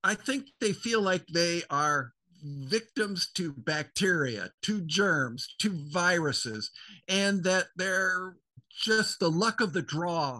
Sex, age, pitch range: male, 50-69, 150-200 Hz